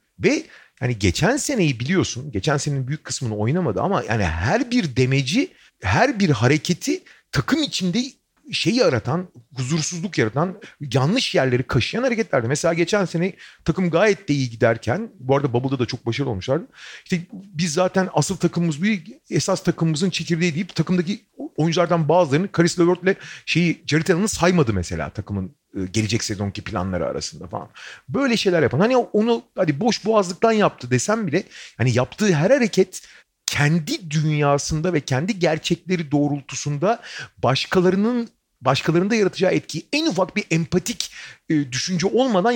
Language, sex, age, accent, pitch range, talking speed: Turkish, male, 40-59, native, 135-195 Hz, 140 wpm